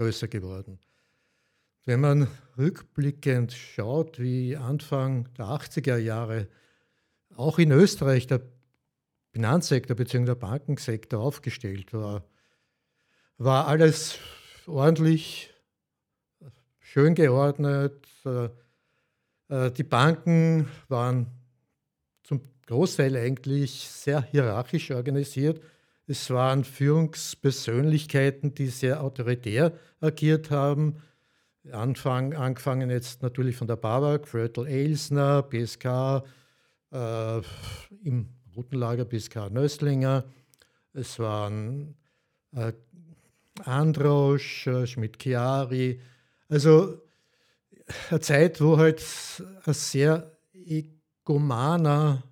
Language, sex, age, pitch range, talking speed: German, male, 60-79, 125-150 Hz, 85 wpm